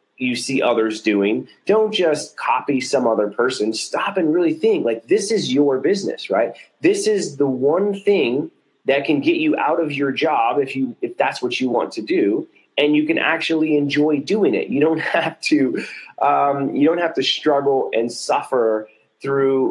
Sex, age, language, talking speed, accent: male, 30-49, English, 190 wpm, American